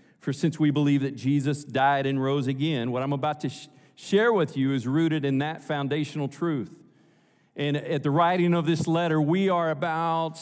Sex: male